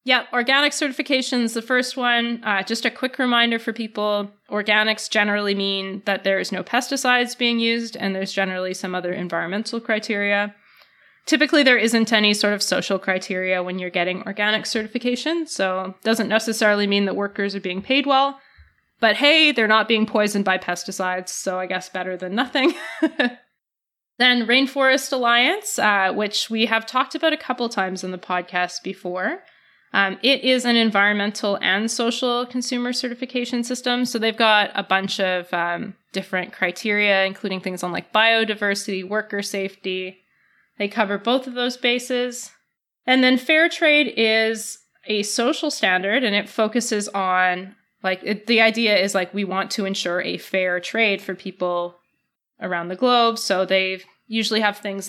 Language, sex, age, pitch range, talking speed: English, female, 20-39, 190-245 Hz, 160 wpm